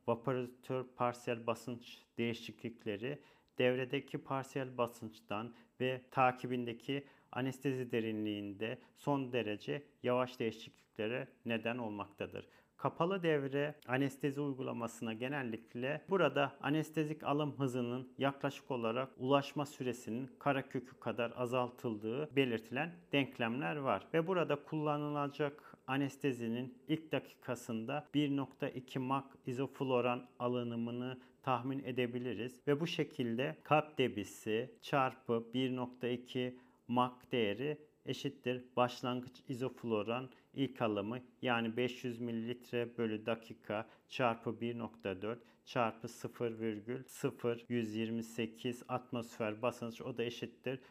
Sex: male